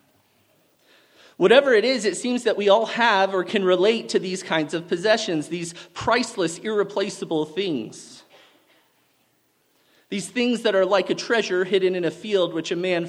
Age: 30-49